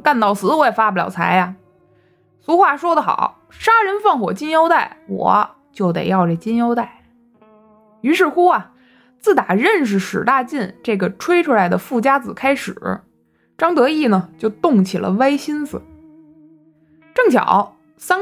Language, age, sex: Chinese, 20-39, female